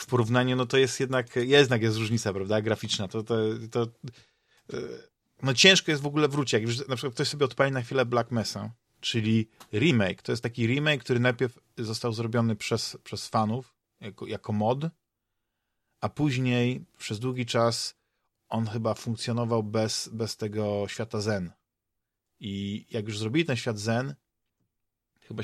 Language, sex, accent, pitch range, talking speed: Polish, male, native, 110-125 Hz, 155 wpm